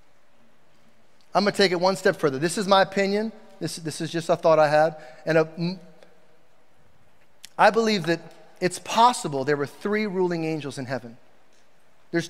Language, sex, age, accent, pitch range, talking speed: English, male, 30-49, American, 155-190 Hz, 160 wpm